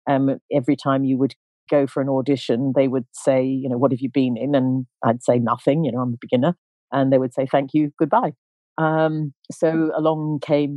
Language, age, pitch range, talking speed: English, 40-59, 130-145 Hz, 215 wpm